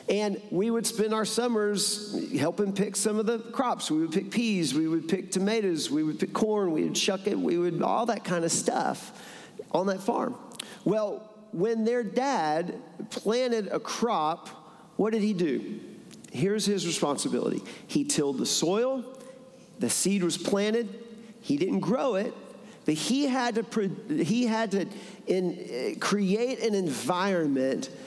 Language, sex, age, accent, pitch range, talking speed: English, male, 40-59, American, 170-225 Hz, 160 wpm